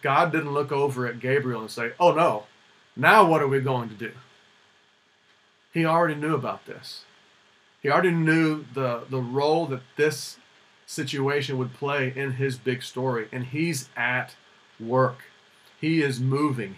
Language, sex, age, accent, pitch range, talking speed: English, male, 40-59, American, 125-150 Hz, 155 wpm